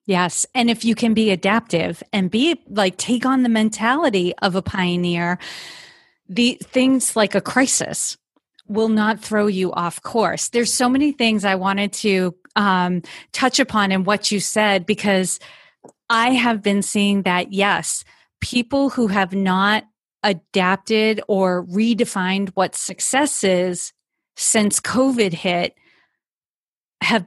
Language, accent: English, American